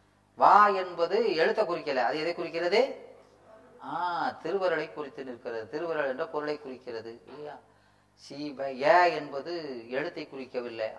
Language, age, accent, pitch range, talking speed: Tamil, 30-49, native, 115-165 Hz, 95 wpm